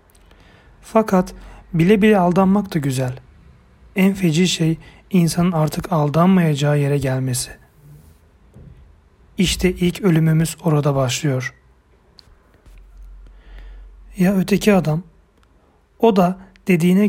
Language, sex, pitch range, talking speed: Turkish, male, 135-175 Hz, 90 wpm